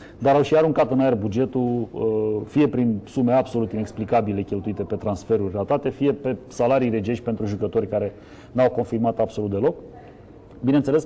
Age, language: 30-49, Romanian